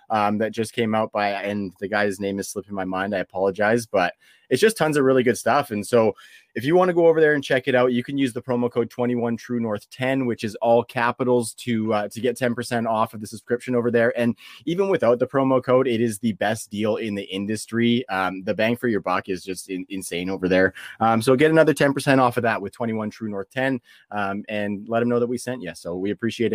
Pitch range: 105-130 Hz